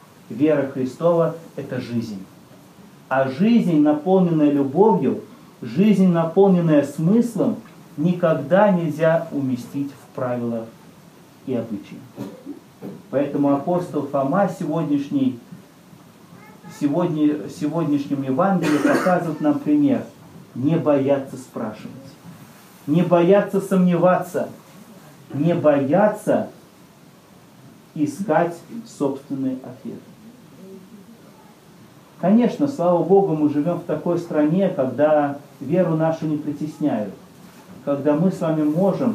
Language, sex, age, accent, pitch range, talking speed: Russian, male, 40-59, native, 140-185 Hz, 85 wpm